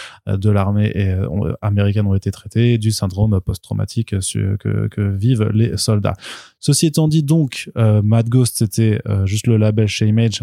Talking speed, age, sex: 180 wpm, 20-39, male